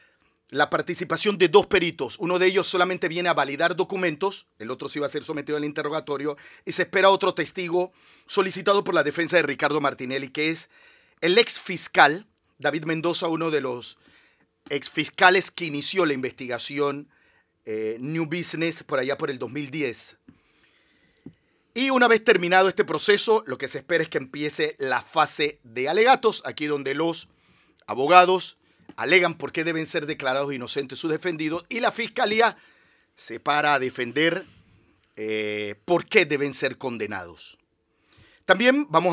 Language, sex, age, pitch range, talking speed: Spanish, male, 40-59, 140-180 Hz, 155 wpm